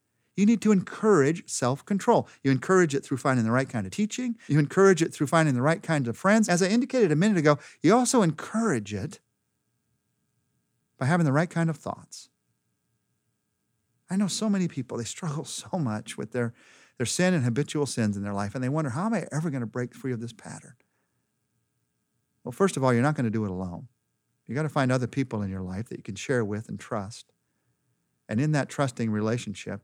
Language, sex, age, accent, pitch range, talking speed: English, male, 50-69, American, 110-155 Hz, 215 wpm